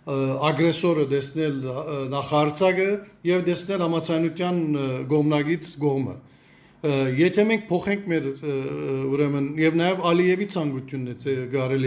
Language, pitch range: English, 150-175 Hz